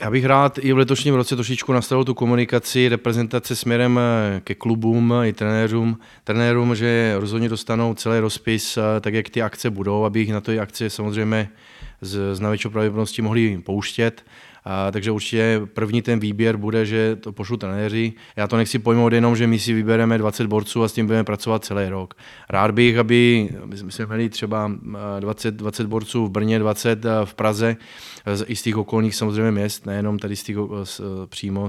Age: 20-39